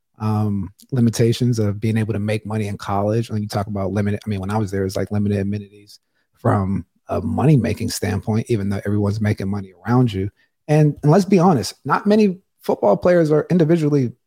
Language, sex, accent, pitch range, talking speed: English, male, American, 110-135 Hz, 205 wpm